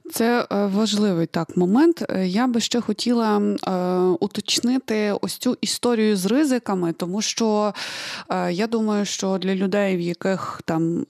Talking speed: 140 wpm